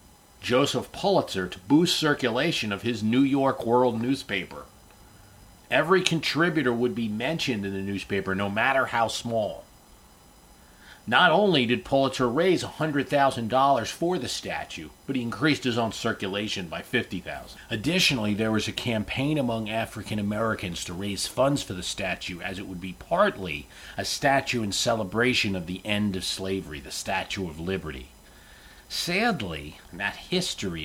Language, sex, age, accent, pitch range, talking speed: English, male, 40-59, American, 95-130 Hz, 150 wpm